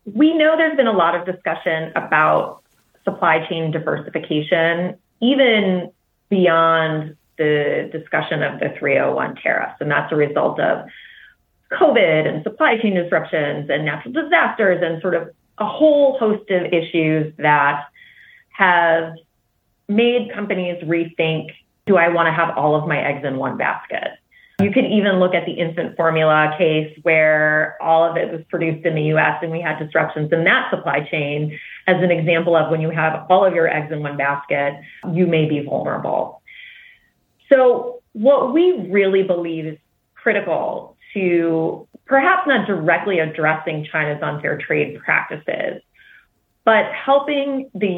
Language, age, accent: English, 30-49, American